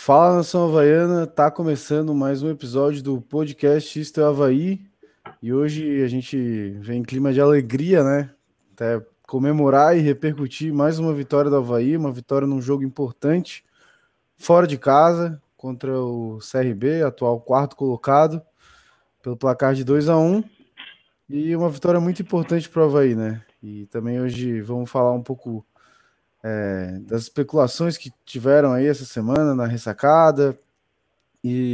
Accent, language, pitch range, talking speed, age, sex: Brazilian, Portuguese, 130-150 Hz, 140 wpm, 20-39, male